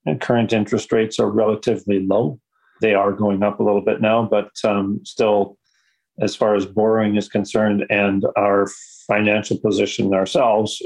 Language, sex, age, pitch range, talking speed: English, male, 40-59, 100-110 Hz, 160 wpm